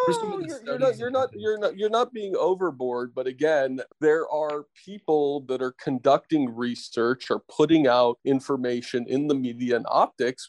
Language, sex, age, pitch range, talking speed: English, male, 40-59, 120-145 Hz, 170 wpm